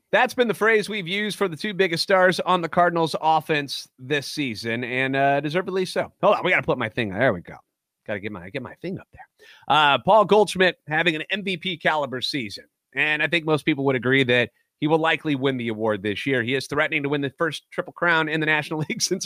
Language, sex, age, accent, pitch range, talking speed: English, male, 30-49, American, 130-175 Hz, 240 wpm